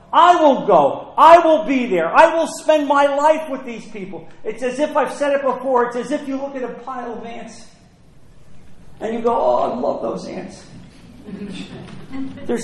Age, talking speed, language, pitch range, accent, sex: 50-69, 195 wpm, English, 215-290 Hz, American, male